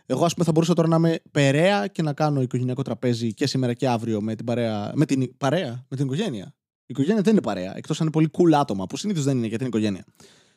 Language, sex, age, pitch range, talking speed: Greek, male, 20-39, 115-180 Hz, 255 wpm